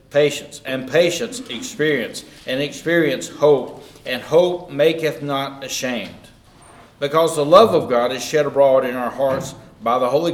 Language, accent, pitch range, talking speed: English, American, 135-190 Hz, 150 wpm